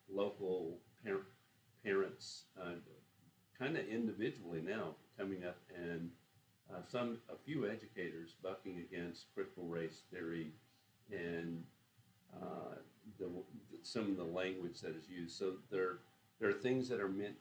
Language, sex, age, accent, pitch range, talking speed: English, male, 50-69, American, 85-95 Hz, 135 wpm